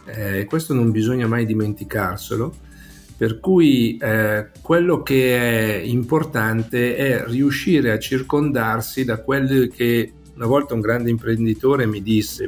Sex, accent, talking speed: male, native, 130 wpm